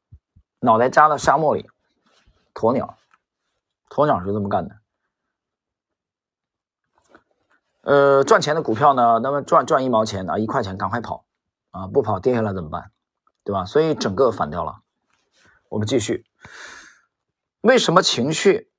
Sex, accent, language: male, native, Chinese